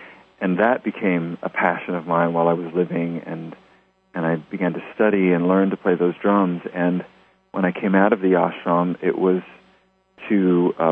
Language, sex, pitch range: English, male, 85-95 Hz